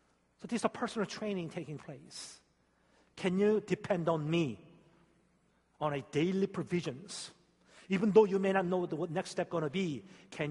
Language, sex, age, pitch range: Korean, male, 40-59, 110-175 Hz